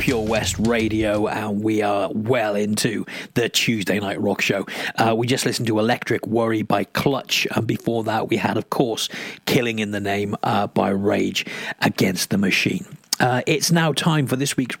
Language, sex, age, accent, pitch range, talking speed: English, male, 40-59, British, 110-125 Hz, 185 wpm